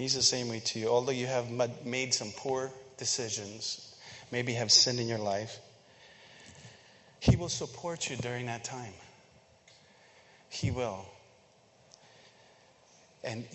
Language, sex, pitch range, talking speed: English, male, 115-145 Hz, 130 wpm